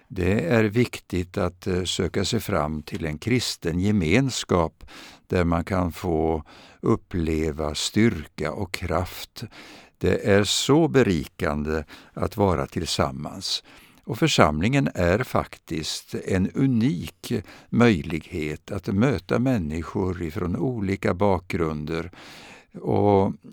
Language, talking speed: Swedish, 100 wpm